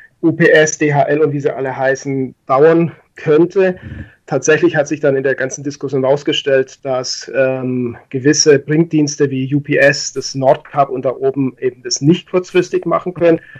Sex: male